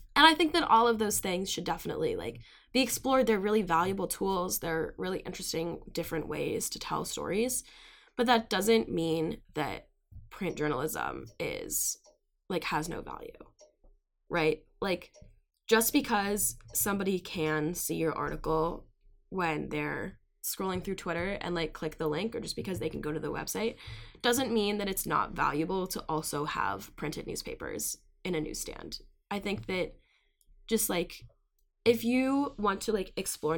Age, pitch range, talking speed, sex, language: 10-29, 160-225 Hz, 160 wpm, female, English